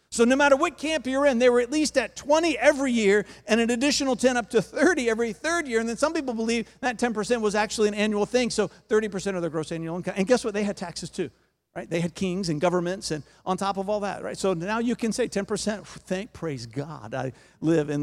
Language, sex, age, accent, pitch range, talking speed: English, male, 50-69, American, 155-225 Hz, 255 wpm